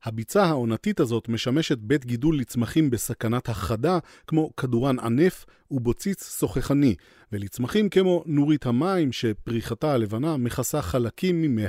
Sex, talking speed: male, 120 wpm